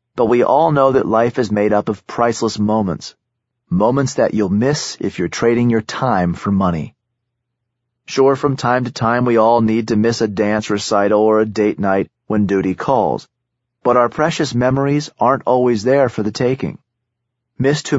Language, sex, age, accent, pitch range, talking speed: English, male, 30-49, American, 105-125 Hz, 185 wpm